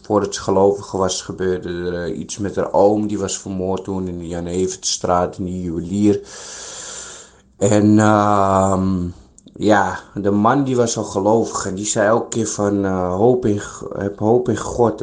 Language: Dutch